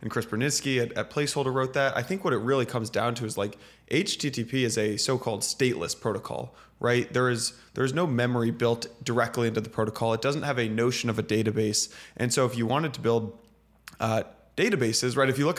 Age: 20-39